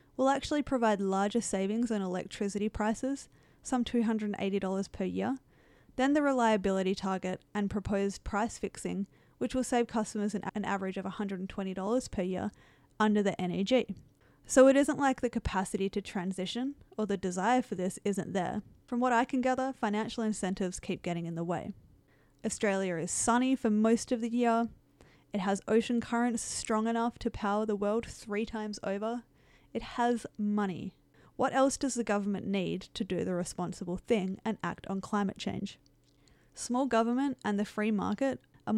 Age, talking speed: 10-29, 165 wpm